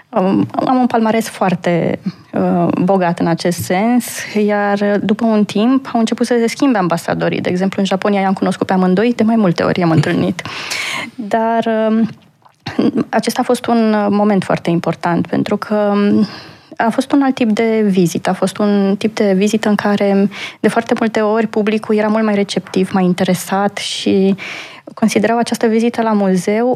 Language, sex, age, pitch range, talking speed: Romanian, female, 20-39, 185-225 Hz, 165 wpm